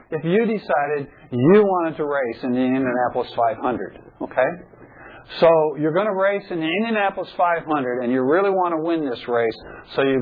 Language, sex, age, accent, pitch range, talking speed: English, male, 60-79, American, 120-170 Hz, 180 wpm